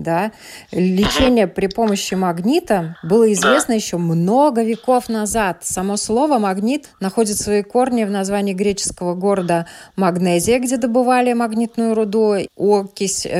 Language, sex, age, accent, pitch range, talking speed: Russian, female, 20-39, native, 185-225 Hz, 120 wpm